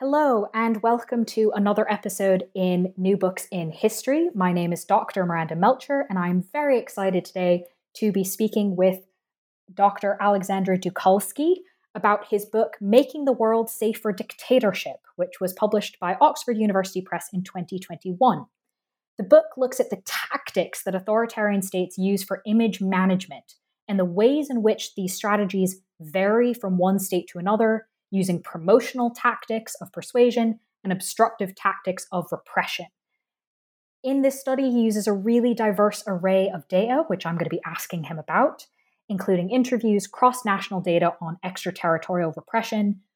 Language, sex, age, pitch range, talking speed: English, female, 20-39, 185-225 Hz, 150 wpm